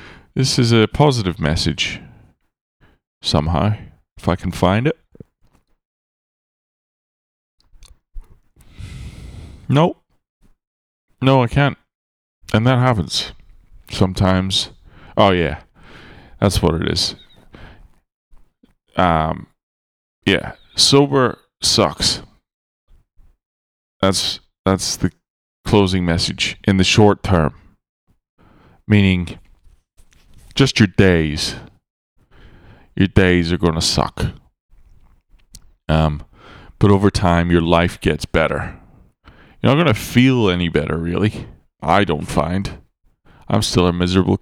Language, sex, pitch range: English, male, 80-105 Hz